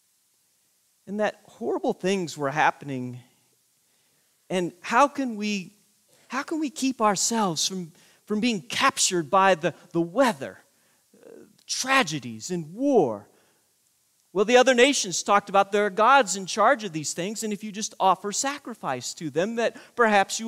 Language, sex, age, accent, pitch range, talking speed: English, male, 40-59, American, 180-270 Hz, 145 wpm